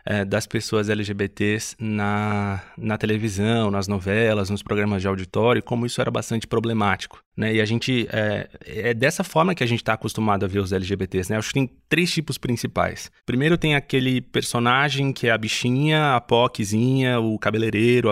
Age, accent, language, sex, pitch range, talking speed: 20-39, Brazilian, Portuguese, male, 105-135 Hz, 175 wpm